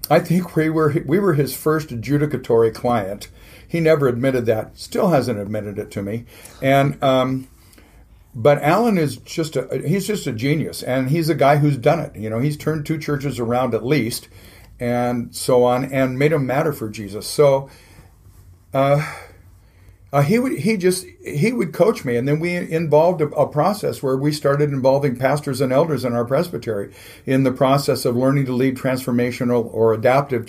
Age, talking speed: 50-69, 185 wpm